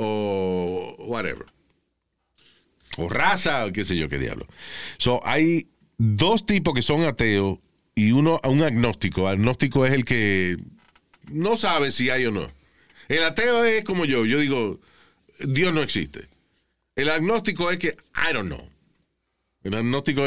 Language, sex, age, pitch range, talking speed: Spanish, male, 40-59, 110-150 Hz, 150 wpm